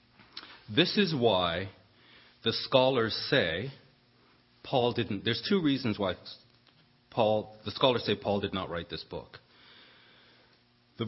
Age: 40-59